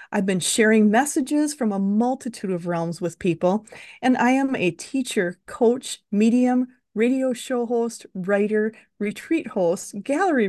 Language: English